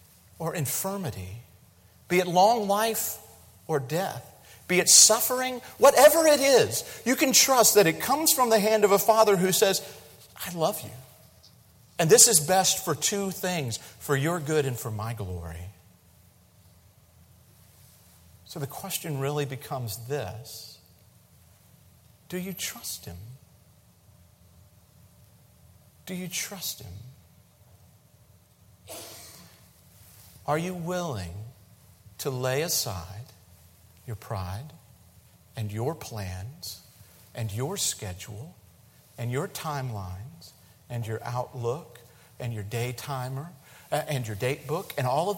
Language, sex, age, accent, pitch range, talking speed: English, male, 50-69, American, 95-155 Hz, 120 wpm